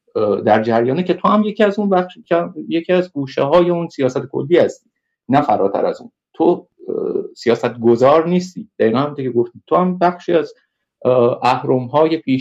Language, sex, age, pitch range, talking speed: Persian, male, 50-69, 130-175 Hz, 170 wpm